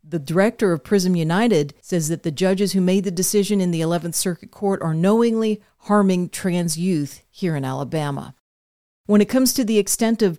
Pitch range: 165-205 Hz